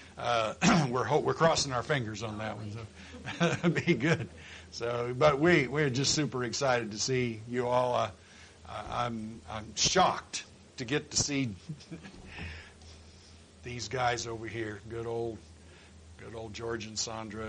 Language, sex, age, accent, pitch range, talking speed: English, male, 60-79, American, 95-125 Hz, 155 wpm